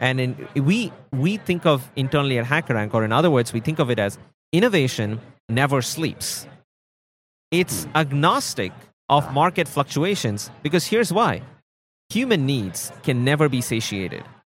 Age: 30-49